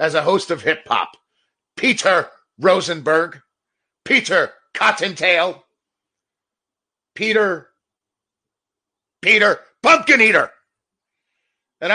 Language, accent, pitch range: English, American, 165-270 Hz